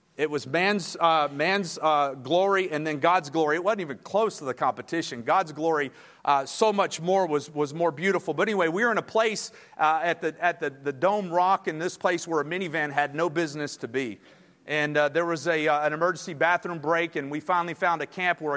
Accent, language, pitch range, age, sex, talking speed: American, English, 150-185 Hz, 40-59, male, 230 wpm